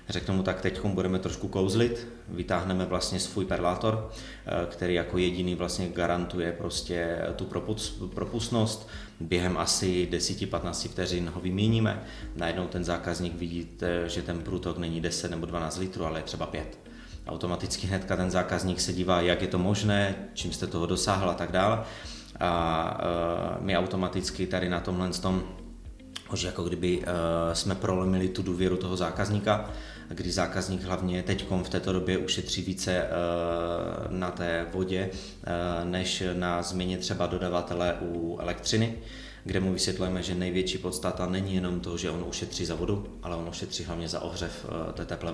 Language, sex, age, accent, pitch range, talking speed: Czech, male, 30-49, native, 85-95 Hz, 150 wpm